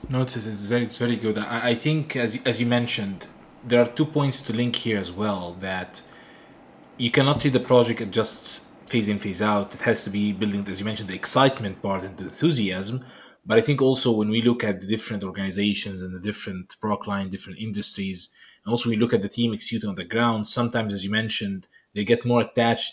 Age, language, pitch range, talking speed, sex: 20-39, English, 100-125 Hz, 220 wpm, male